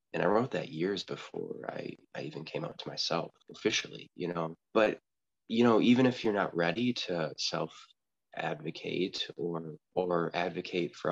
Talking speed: 160 wpm